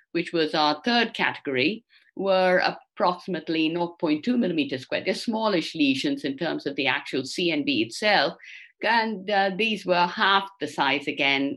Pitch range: 160-235 Hz